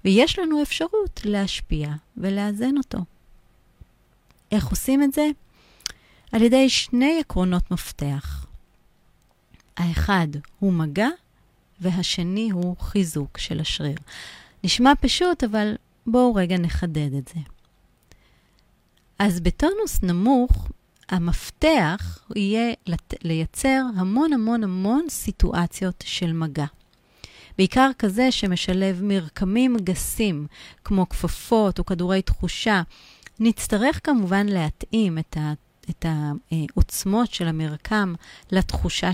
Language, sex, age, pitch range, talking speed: Hebrew, female, 30-49, 170-235 Hz, 95 wpm